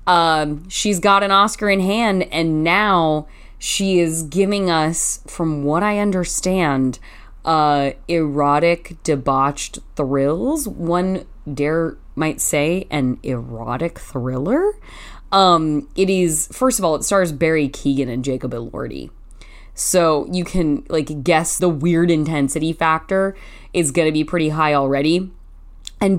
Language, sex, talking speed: English, female, 130 wpm